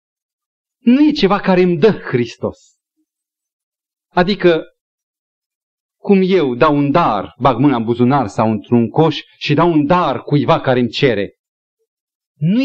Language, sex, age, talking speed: Romanian, male, 40-59, 140 wpm